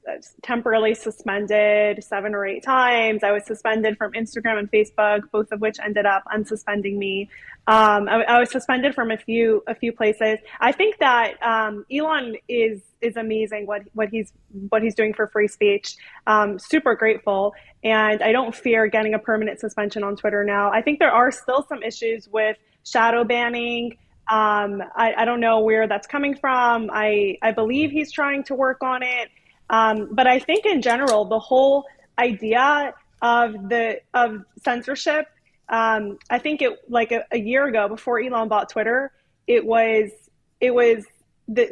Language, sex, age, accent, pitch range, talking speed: English, female, 20-39, American, 215-245 Hz, 175 wpm